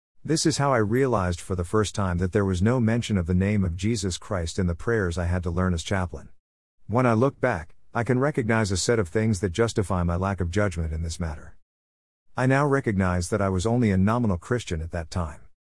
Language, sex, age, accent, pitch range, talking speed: English, male, 50-69, American, 90-115 Hz, 235 wpm